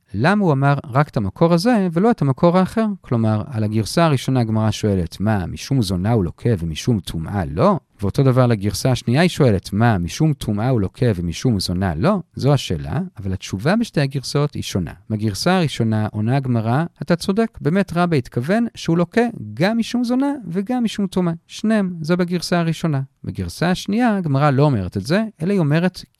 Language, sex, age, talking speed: Hebrew, male, 40-59, 160 wpm